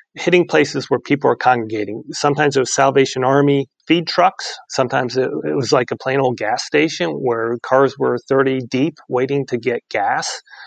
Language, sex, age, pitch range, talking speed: English, male, 30-49, 120-140 Hz, 180 wpm